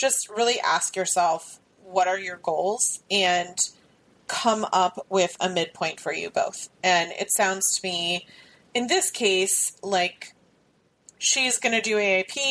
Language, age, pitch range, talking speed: English, 30-49, 185-220 Hz, 150 wpm